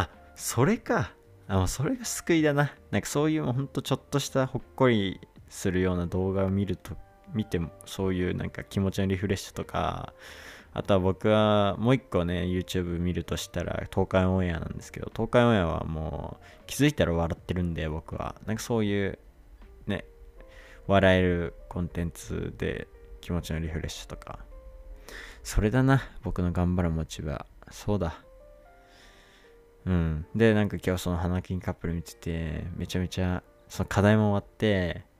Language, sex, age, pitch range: Japanese, male, 20-39, 85-105 Hz